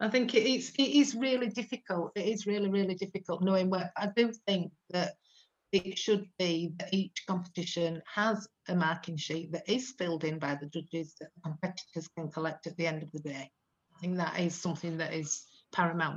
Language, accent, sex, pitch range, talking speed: English, British, female, 165-195 Hz, 195 wpm